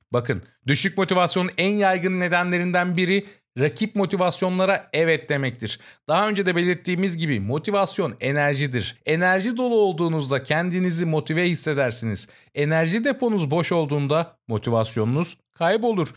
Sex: male